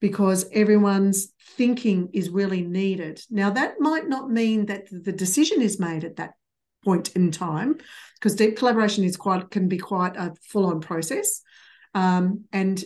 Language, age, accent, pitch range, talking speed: English, 50-69, Australian, 185-225 Hz, 150 wpm